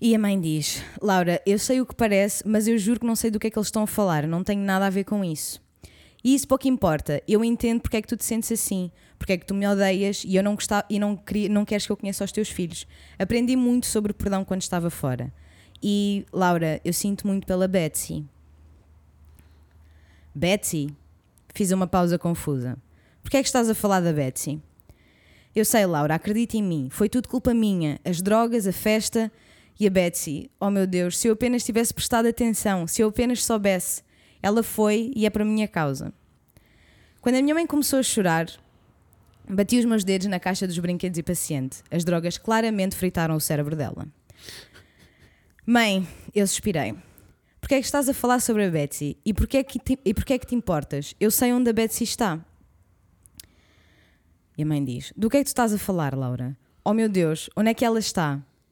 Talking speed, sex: 205 wpm, female